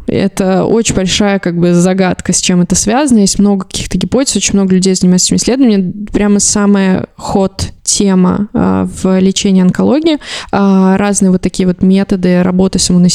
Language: Russian